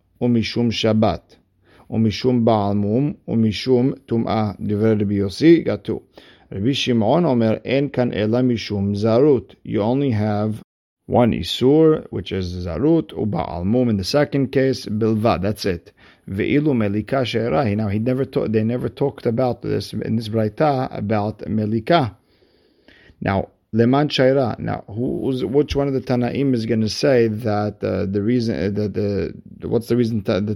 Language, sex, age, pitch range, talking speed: English, male, 50-69, 105-125 Hz, 110 wpm